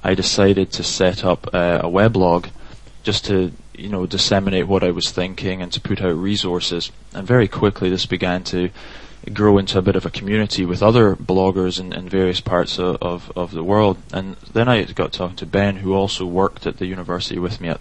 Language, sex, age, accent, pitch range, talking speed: English, male, 20-39, British, 90-100 Hz, 210 wpm